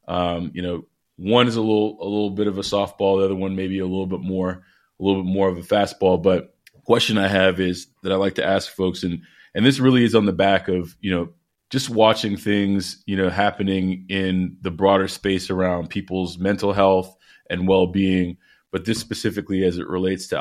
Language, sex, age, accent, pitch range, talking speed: English, male, 20-39, American, 95-105 Hz, 215 wpm